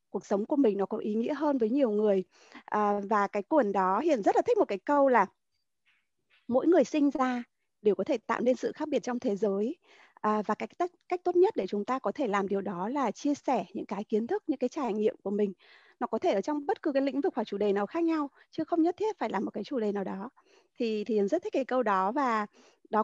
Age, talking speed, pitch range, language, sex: 20-39, 275 wpm, 210-295 Hz, Vietnamese, female